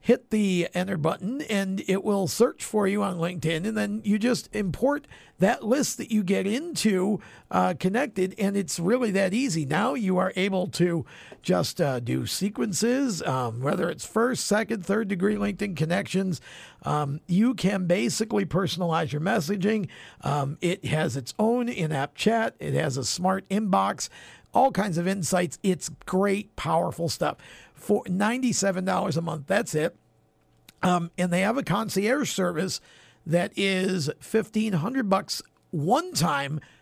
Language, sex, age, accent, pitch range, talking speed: English, male, 50-69, American, 160-205 Hz, 155 wpm